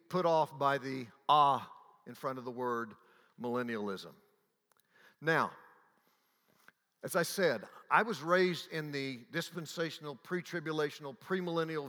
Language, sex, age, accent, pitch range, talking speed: English, male, 60-79, American, 140-185 Hz, 115 wpm